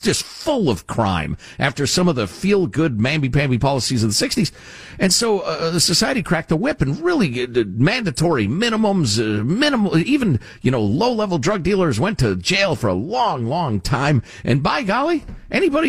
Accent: American